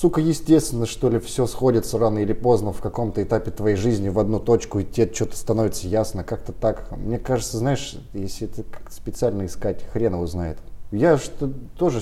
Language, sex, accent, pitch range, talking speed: Russian, male, native, 90-115 Hz, 180 wpm